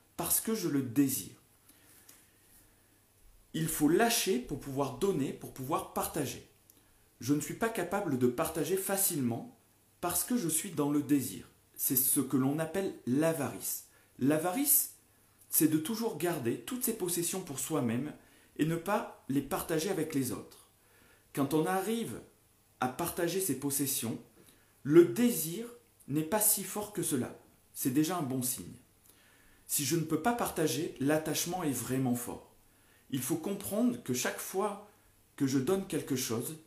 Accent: French